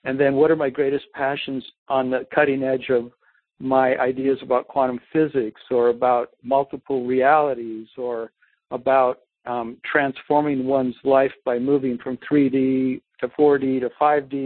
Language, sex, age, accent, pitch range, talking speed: English, male, 60-79, American, 125-145 Hz, 145 wpm